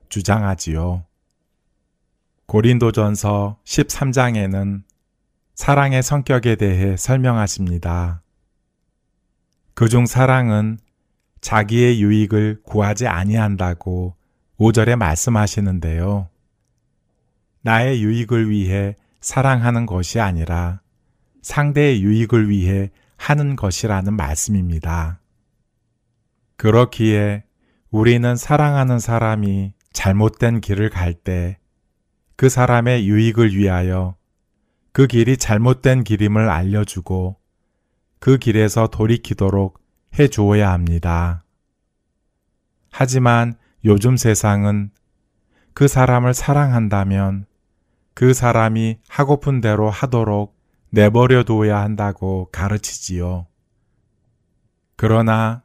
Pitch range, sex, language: 95-120 Hz, male, Korean